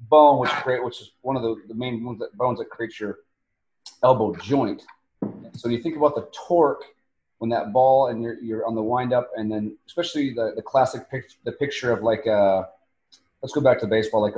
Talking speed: 200 wpm